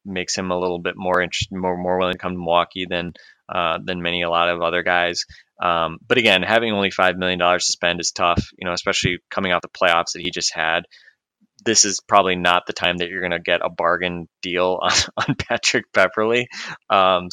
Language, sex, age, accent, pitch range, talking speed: English, male, 20-39, American, 85-95 Hz, 220 wpm